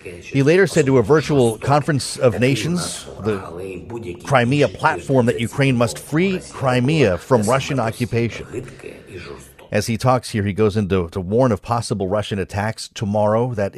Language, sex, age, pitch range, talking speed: English, male, 40-59, 100-125 Hz, 150 wpm